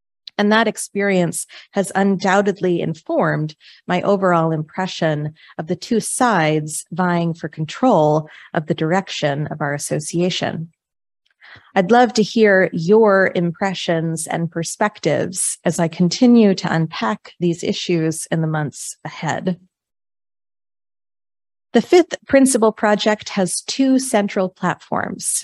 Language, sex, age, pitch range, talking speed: English, female, 30-49, 165-215 Hz, 115 wpm